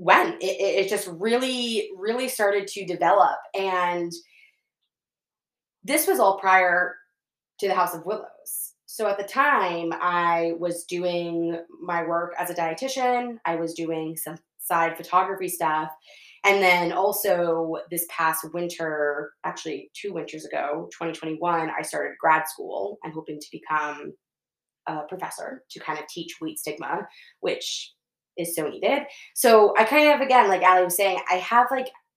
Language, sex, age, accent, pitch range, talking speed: English, female, 20-39, American, 165-205 Hz, 150 wpm